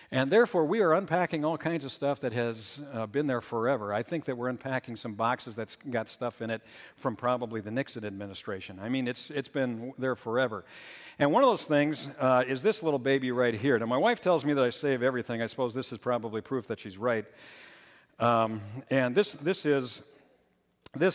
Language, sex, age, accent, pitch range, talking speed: English, male, 60-79, American, 115-145 Hz, 205 wpm